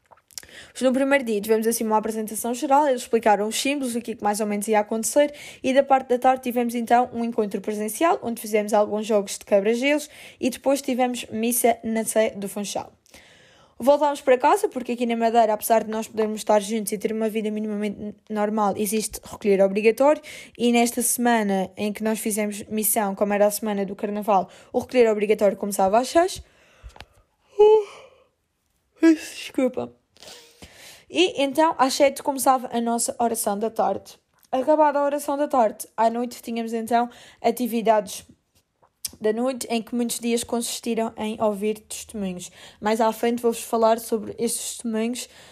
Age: 20-39